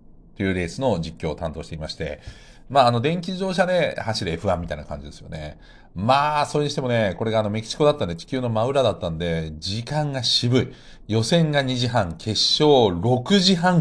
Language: Japanese